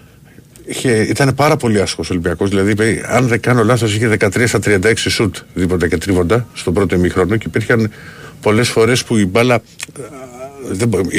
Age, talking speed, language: 50-69, 175 wpm, Greek